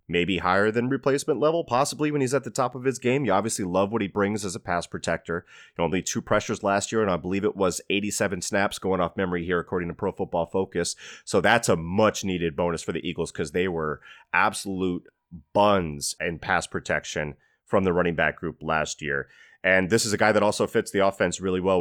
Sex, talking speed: male, 225 wpm